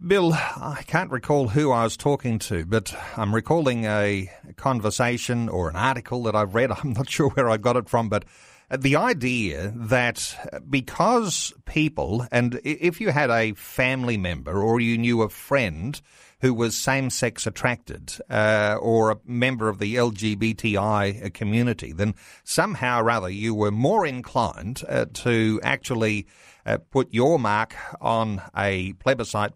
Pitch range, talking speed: 105-130 Hz, 155 wpm